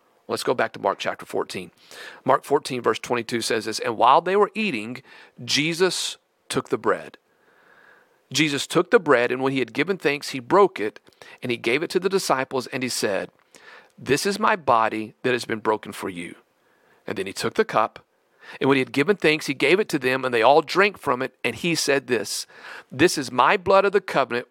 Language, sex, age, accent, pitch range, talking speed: English, male, 40-59, American, 125-175 Hz, 220 wpm